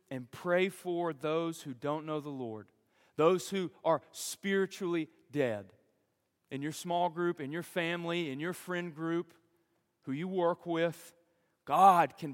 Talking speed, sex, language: 150 wpm, male, English